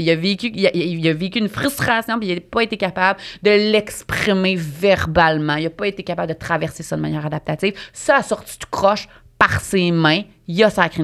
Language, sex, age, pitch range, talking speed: French, female, 30-49, 150-205 Hz, 225 wpm